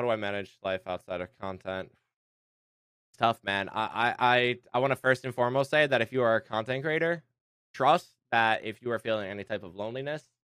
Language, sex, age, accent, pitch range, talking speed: English, male, 20-39, American, 105-130 Hz, 210 wpm